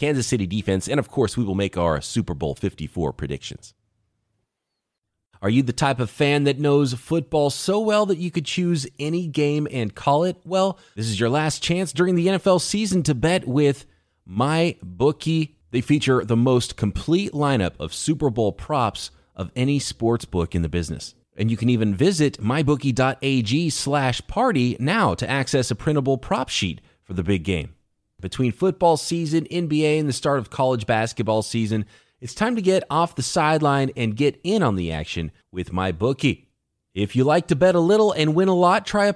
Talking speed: 190 wpm